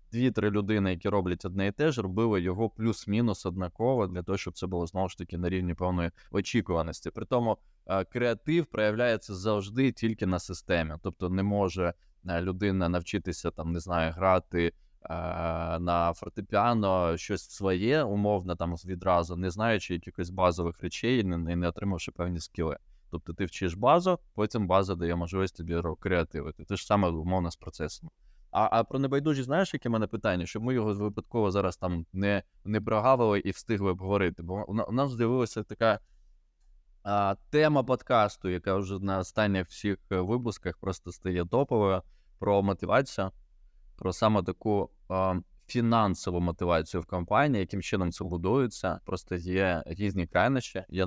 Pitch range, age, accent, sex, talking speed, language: 90-110 Hz, 20-39, native, male, 155 wpm, Ukrainian